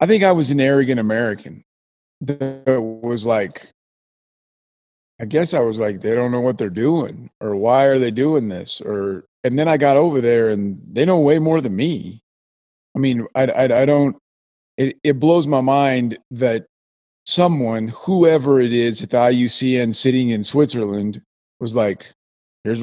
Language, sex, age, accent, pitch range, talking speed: English, male, 40-59, American, 110-145 Hz, 175 wpm